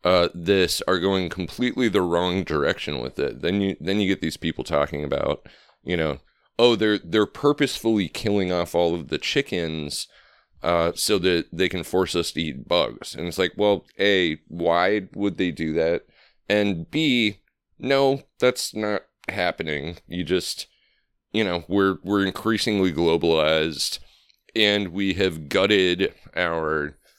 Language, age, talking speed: English, 30-49, 155 wpm